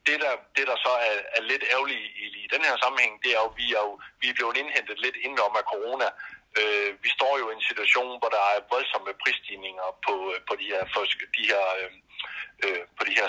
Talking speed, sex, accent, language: 215 wpm, male, native, Danish